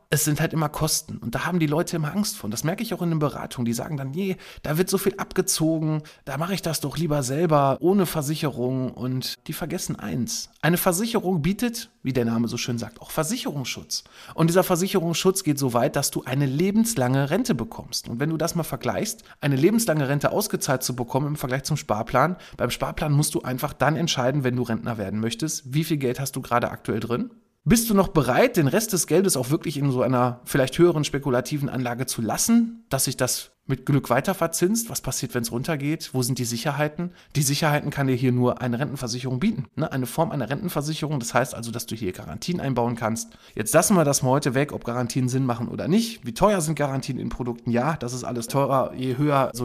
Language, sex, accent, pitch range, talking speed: German, male, German, 125-165 Hz, 225 wpm